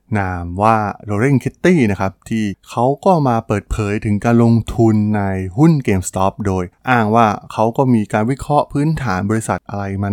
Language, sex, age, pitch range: Thai, male, 20-39, 100-125 Hz